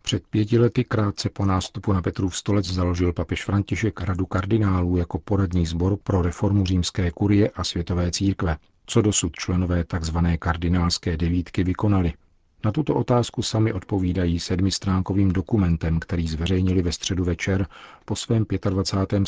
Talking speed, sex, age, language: 145 wpm, male, 40-59, Czech